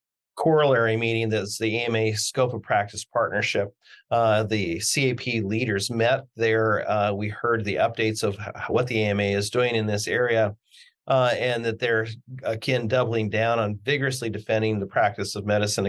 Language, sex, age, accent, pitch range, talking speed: English, male, 40-59, American, 105-120 Hz, 160 wpm